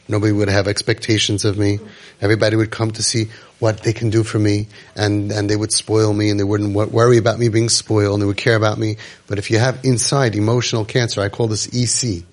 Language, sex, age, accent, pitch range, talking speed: English, male, 30-49, American, 100-120 Hz, 235 wpm